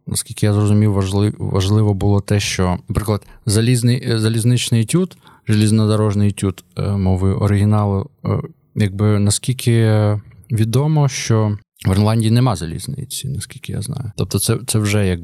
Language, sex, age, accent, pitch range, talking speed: Ukrainian, male, 20-39, native, 95-125 Hz, 120 wpm